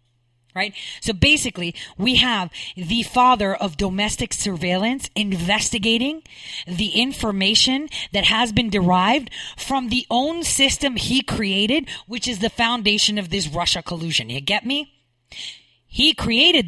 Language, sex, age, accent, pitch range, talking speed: English, female, 40-59, American, 155-245 Hz, 130 wpm